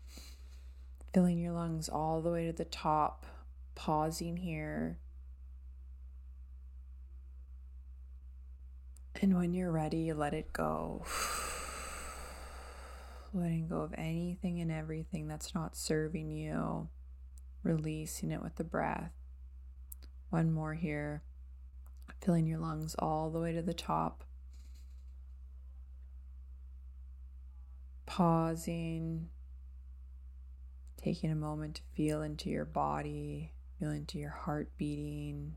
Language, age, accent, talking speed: English, 20-39, American, 100 wpm